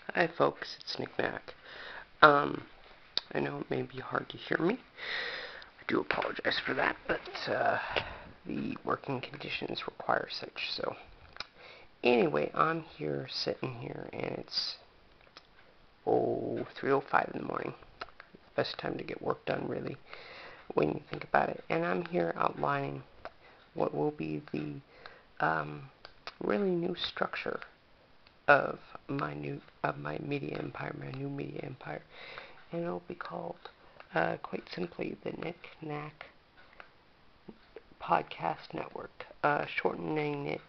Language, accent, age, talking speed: English, American, 50-69, 130 wpm